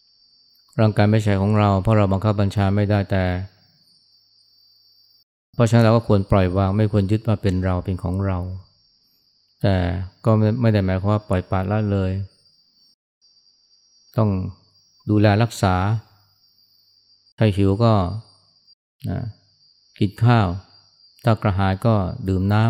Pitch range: 95-110 Hz